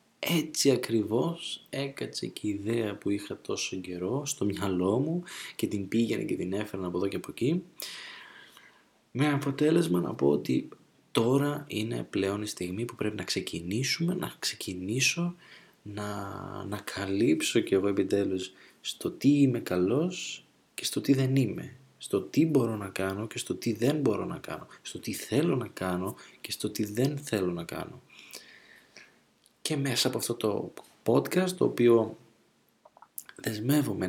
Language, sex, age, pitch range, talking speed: Greek, male, 20-39, 95-140 Hz, 155 wpm